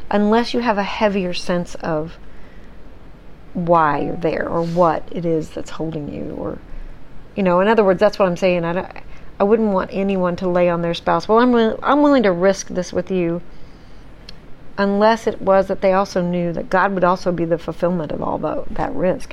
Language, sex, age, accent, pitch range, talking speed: English, female, 40-59, American, 170-200 Hz, 210 wpm